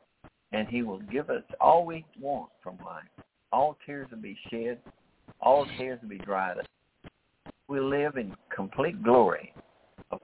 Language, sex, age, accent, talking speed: English, male, 60-79, American, 160 wpm